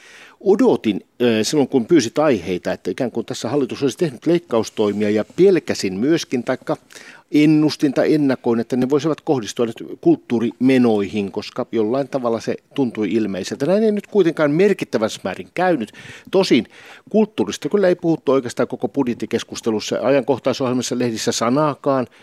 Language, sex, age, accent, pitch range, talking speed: Finnish, male, 60-79, native, 110-150 Hz, 130 wpm